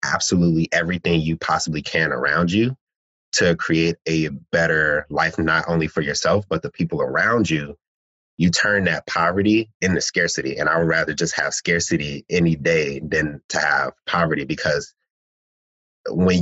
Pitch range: 80-100 Hz